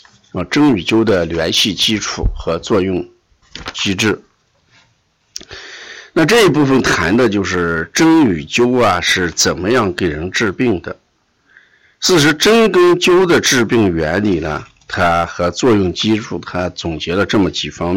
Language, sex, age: Chinese, male, 50-69